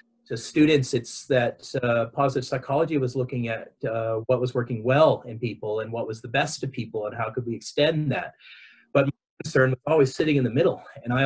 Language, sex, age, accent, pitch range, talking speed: English, male, 30-49, American, 115-145 Hz, 220 wpm